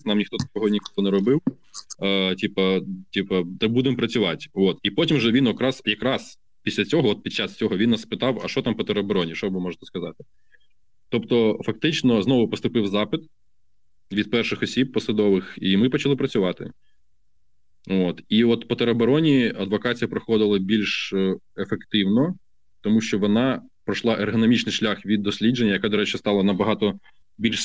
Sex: male